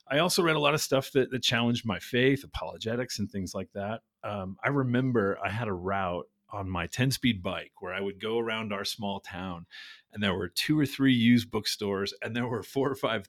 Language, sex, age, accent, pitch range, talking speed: English, male, 40-59, American, 100-125 Hz, 230 wpm